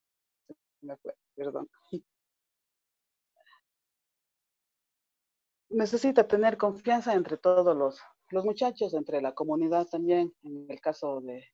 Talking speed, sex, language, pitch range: 100 wpm, female, Spanish, 135-165 Hz